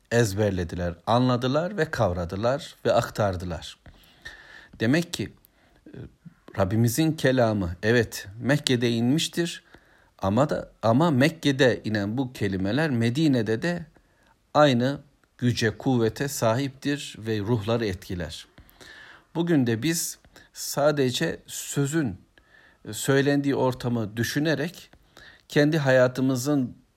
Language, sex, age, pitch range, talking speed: Turkish, male, 60-79, 105-140 Hz, 85 wpm